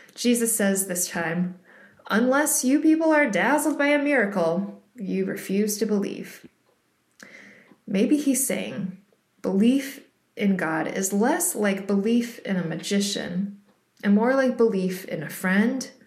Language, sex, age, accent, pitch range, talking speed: English, female, 20-39, American, 185-235 Hz, 135 wpm